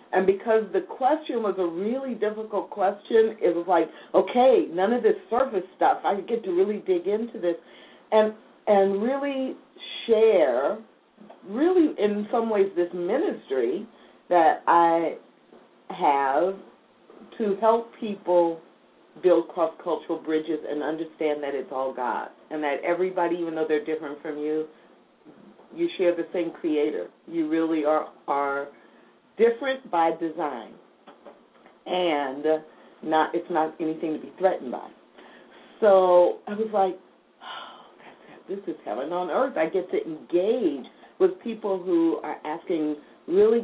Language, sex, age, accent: English, female, 50-69, American